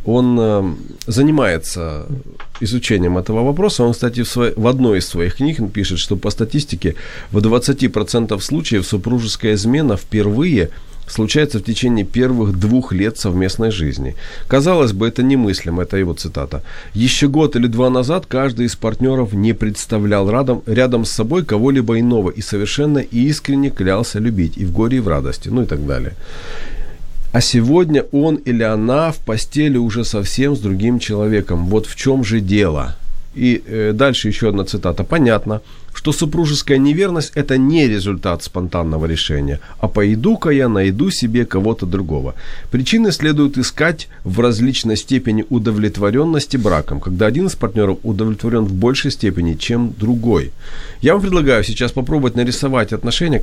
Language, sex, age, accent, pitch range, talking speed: Ukrainian, male, 40-59, native, 95-130 Hz, 150 wpm